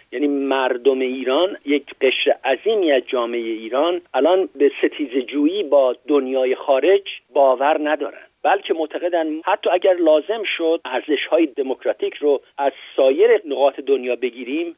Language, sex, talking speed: Persian, male, 130 wpm